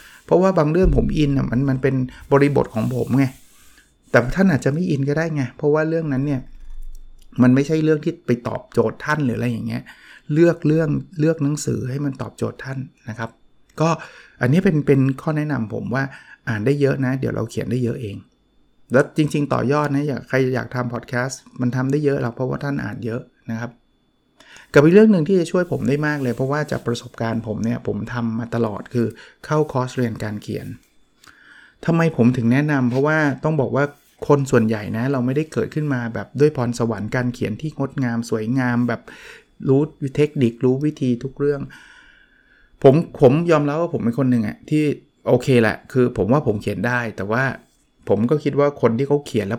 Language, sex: Thai, male